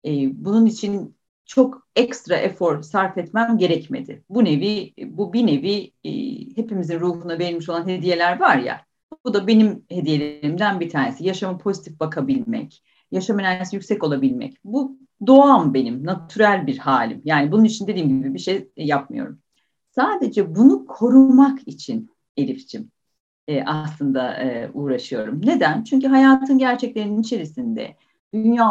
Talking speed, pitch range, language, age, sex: 135 wpm, 180-250 Hz, Turkish, 40-59, female